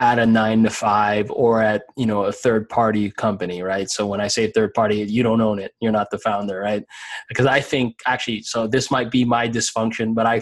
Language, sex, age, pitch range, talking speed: English, male, 20-39, 115-130 Hz, 235 wpm